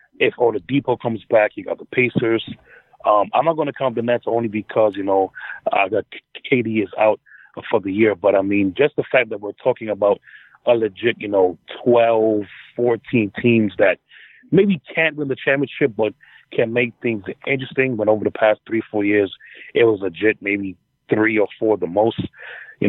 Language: English